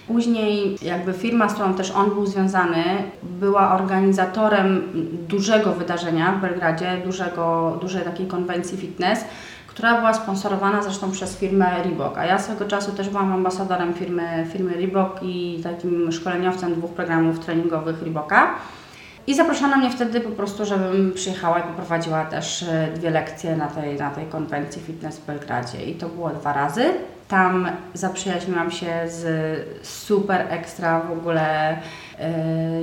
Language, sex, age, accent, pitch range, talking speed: Polish, female, 30-49, native, 165-195 Hz, 145 wpm